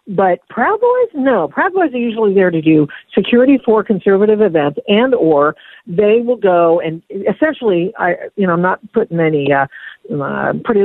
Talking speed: 175 wpm